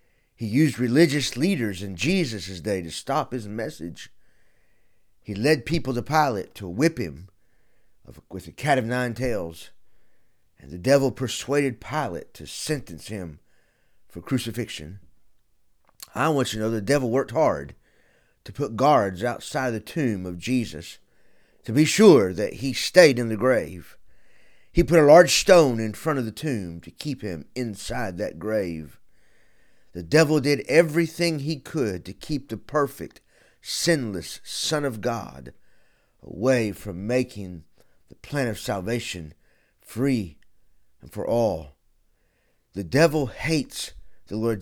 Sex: male